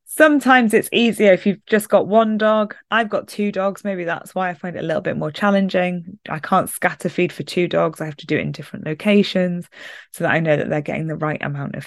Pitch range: 170-215 Hz